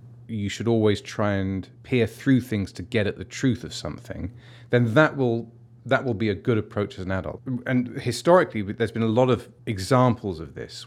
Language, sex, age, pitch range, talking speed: English, male, 30-49, 95-120 Hz, 205 wpm